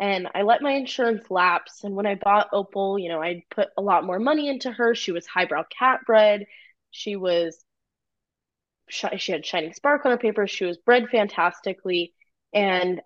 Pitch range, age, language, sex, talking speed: 180-230 Hz, 20-39, English, female, 185 wpm